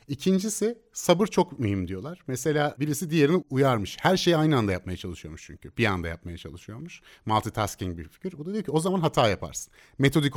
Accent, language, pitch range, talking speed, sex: native, Turkish, 100-160 Hz, 185 wpm, male